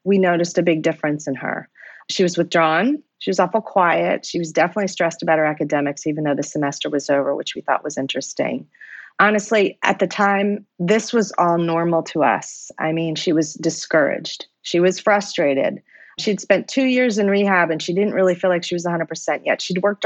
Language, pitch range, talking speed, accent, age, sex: English, 165-205 Hz, 205 wpm, American, 30-49, female